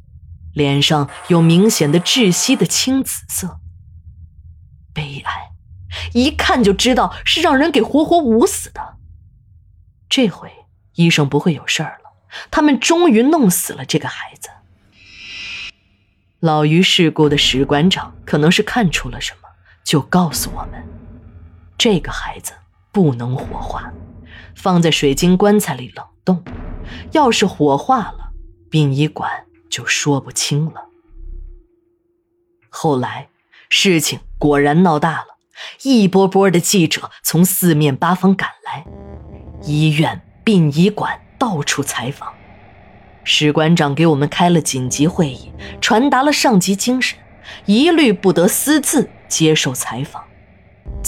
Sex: female